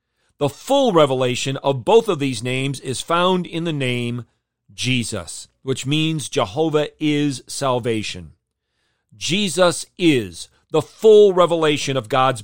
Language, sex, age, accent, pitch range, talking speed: English, male, 40-59, American, 120-175 Hz, 125 wpm